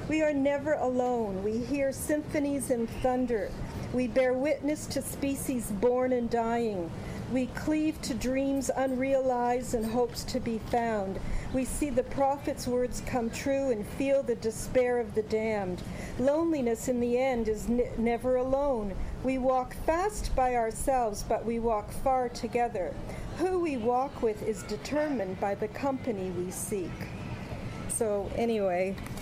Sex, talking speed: female, 145 wpm